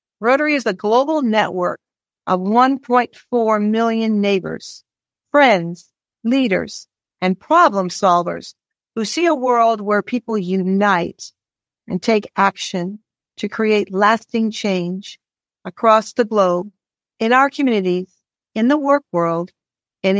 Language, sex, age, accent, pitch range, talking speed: English, female, 50-69, American, 190-235 Hz, 115 wpm